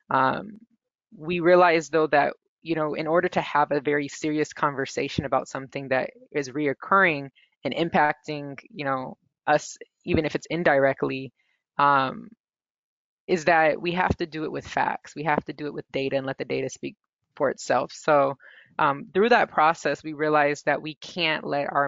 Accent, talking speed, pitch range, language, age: American, 180 wpm, 140-160 Hz, English, 20-39